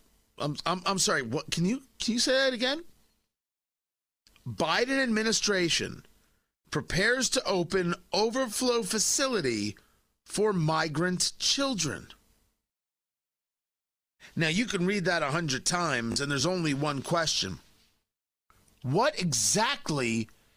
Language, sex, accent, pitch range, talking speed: English, male, American, 145-215 Hz, 110 wpm